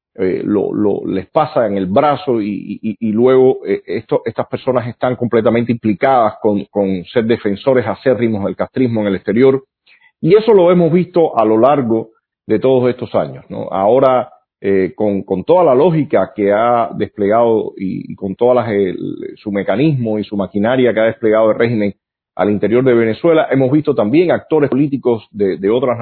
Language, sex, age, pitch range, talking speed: Spanish, male, 40-59, 105-140 Hz, 180 wpm